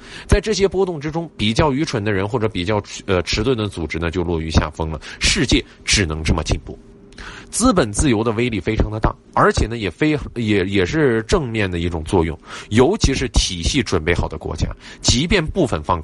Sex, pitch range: male, 95-155 Hz